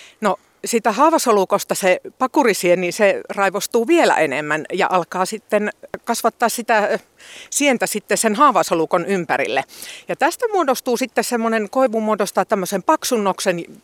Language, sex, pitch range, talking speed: Finnish, female, 175-225 Hz, 115 wpm